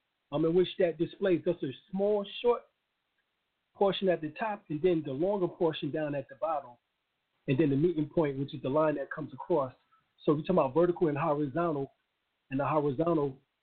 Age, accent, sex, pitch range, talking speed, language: 40-59, American, male, 140-165 Hz, 195 wpm, English